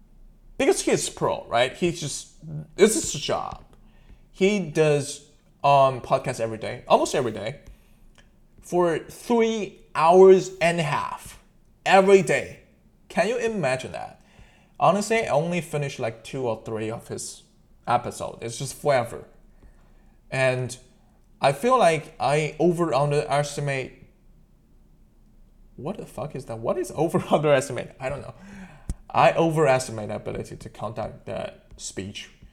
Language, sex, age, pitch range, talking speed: English, male, 20-39, 120-165 Hz, 130 wpm